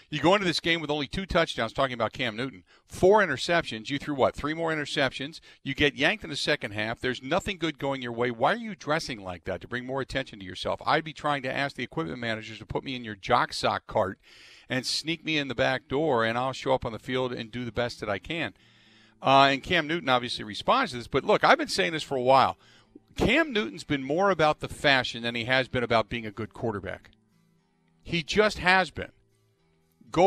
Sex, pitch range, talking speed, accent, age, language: male, 125-175 Hz, 240 wpm, American, 50-69, English